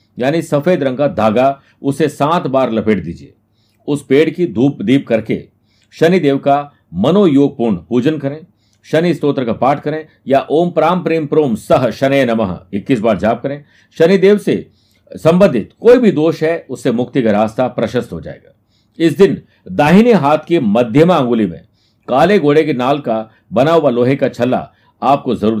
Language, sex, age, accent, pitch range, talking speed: Hindi, male, 50-69, native, 125-160 Hz, 175 wpm